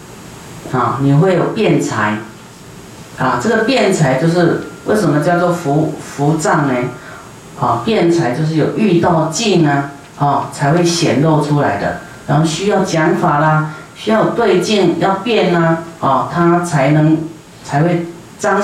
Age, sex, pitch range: 40-59, female, 145-175 Hz